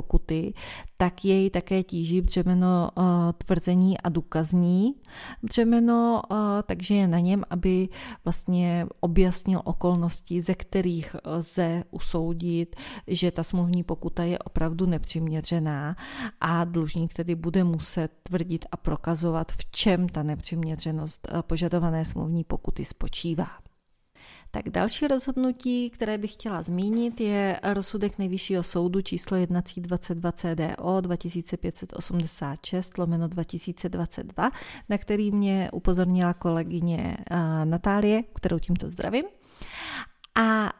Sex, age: female, 30-49